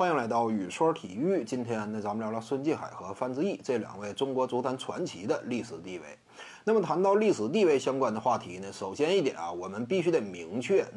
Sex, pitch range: male, 120-200 Hz